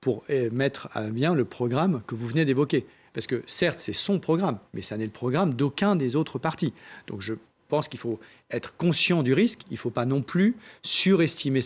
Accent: French